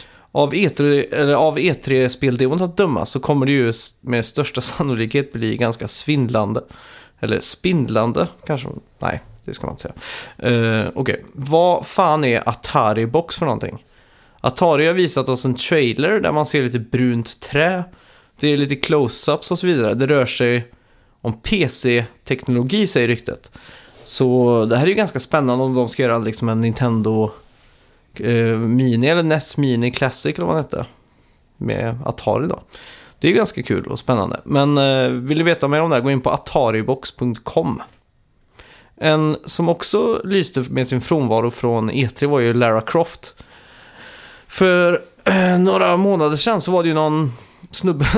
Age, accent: 30-49, native